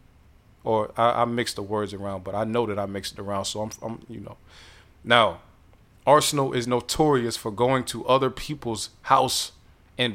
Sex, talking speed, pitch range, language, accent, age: male, 185 wpm, 100-125 Hz, English, American, 30-49